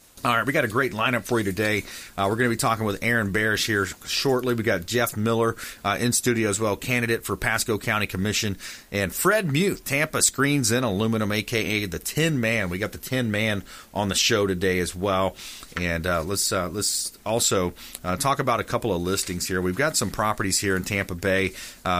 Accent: American